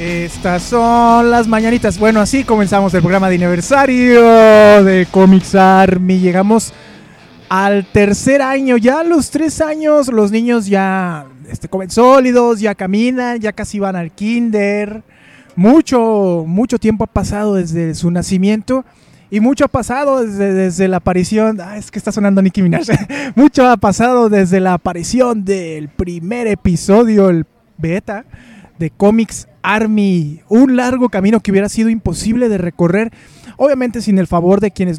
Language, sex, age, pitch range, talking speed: Spanish, male, 20-39, 185-230 Hz, 150 wpm